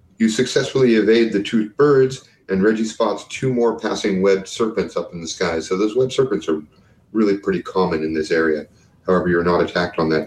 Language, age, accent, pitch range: English, 40-59, American, 95-115 Hz